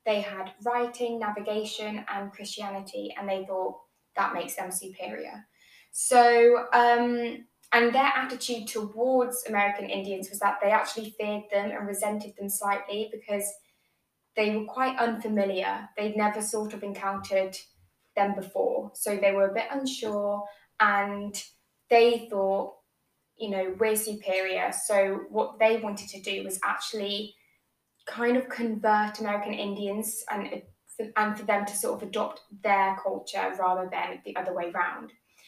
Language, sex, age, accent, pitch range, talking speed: English, female, 10-29, British, 200-225 Hz, 145 wpm